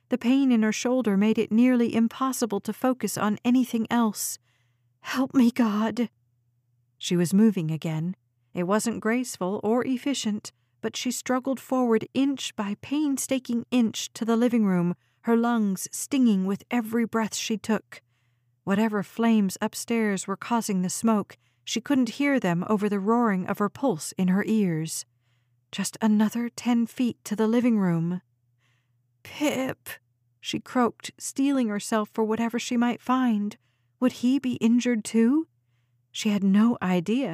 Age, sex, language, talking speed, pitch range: 40-59, female, English, 150 wpm, 170-235 Hz